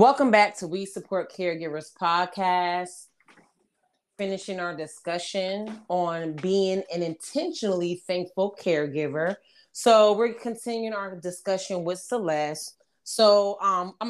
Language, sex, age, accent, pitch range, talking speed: English, female, 30-49, American, 175-225 Hz, 110 wpm